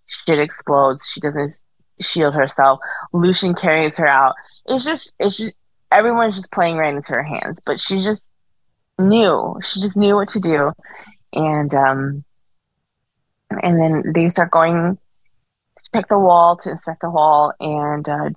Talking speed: 155 wpm